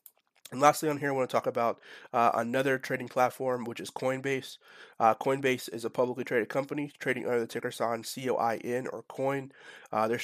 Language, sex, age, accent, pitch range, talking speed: English, male, 30-49, American, 120-130 Hz, 195 wpm